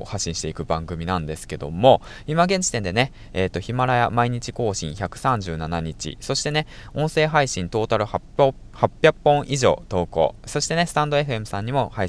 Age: 20-39